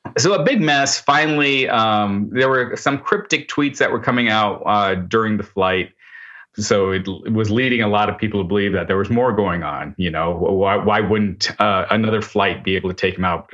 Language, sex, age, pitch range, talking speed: English, male, 30-49, 95-120 Hz, 220 wpm